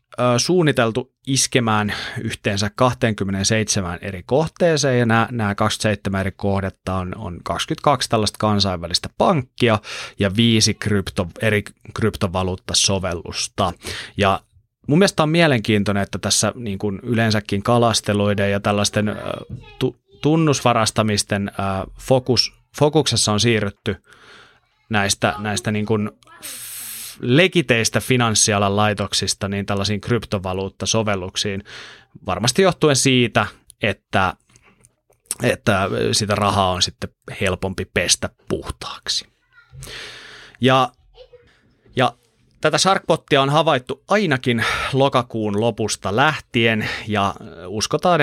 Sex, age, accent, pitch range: male, 30-49, native, 100-125 Hz